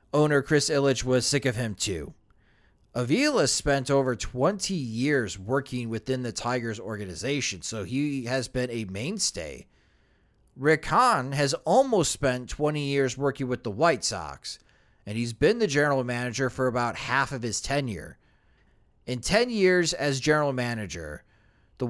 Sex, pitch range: male, 115-150 Hz